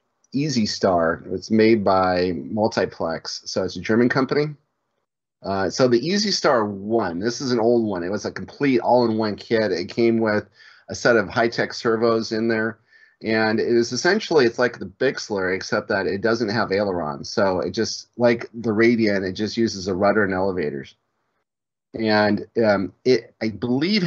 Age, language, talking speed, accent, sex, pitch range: 30-49, English, 175 wpm, American, male, 105-120 Hz